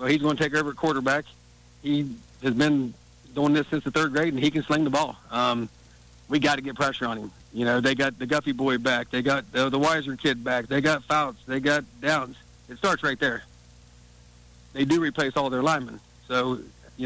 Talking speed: 220 wpm